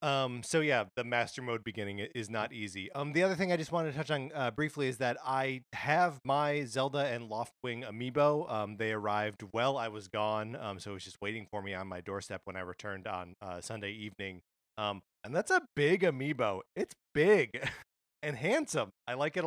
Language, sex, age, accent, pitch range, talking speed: English, male, 30-49, American, 105-135 Hz, 215 wpm